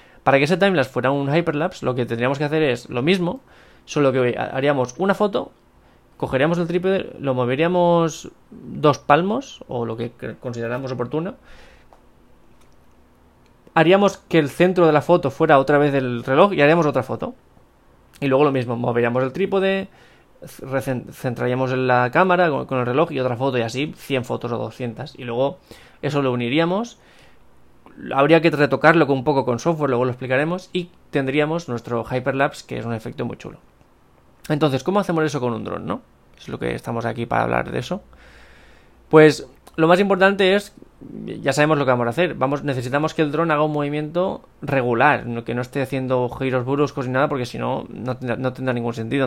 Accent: Spanish